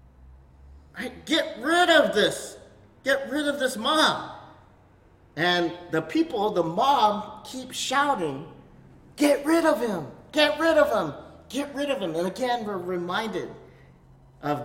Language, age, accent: English, 40-59, American